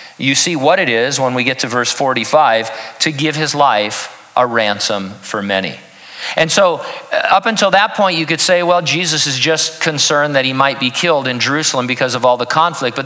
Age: 50-69